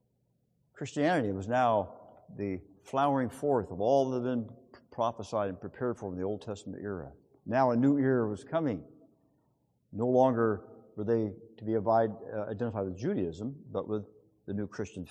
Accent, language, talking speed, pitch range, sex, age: American, English, 160 wpm, 115-160 Hz, male, 50-69